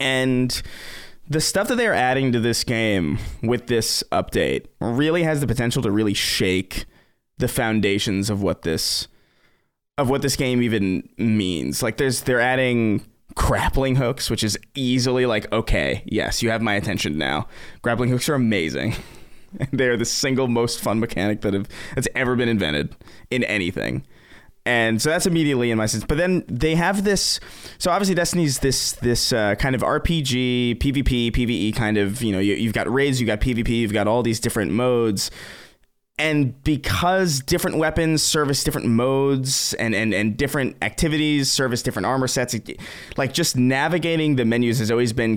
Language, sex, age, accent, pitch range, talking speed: English, male, 20-39, American, 105-135 Hz, 170 wpm